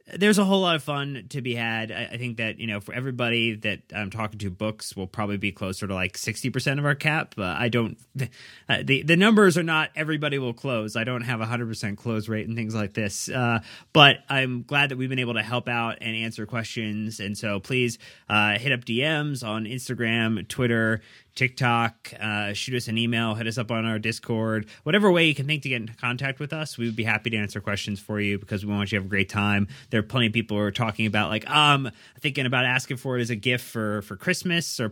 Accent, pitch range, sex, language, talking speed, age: American, 105-130 Hz, male, English, 250 wpm, 30-49